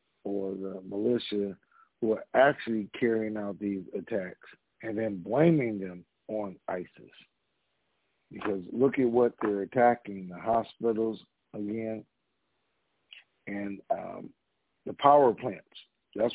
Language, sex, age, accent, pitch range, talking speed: English, male, 50-69, American, 105-120 Hz, 115 wpm